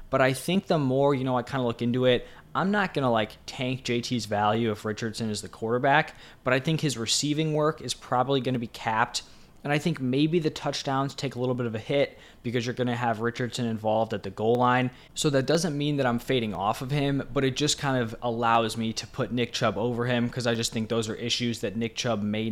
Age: 20-39